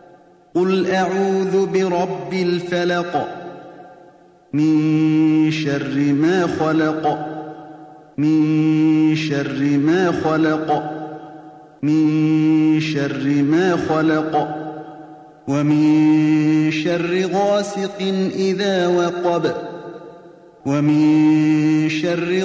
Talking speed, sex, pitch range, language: 60 wpm, male, 155-180 Hz, Amharic